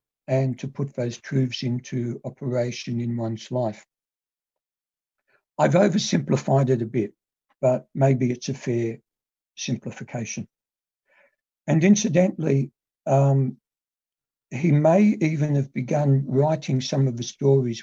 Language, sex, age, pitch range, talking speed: English, male, 60-79, 120-135 Hz, 115 wpm